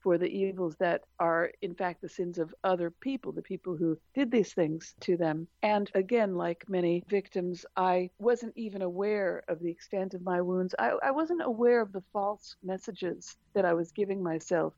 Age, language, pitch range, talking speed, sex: 60-79, English, 180-205 Hz, 195 wpm, female